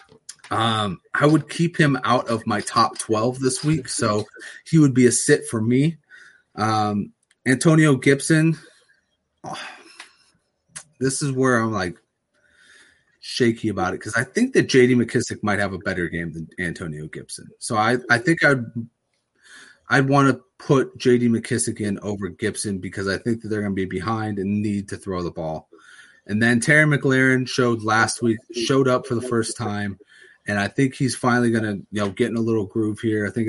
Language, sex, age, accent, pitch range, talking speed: English, male, 30-49, American, 100-130 Hz, 185 wpm